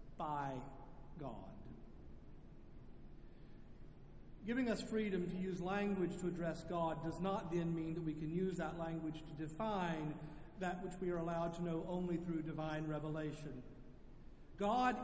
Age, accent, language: 50-69, American, English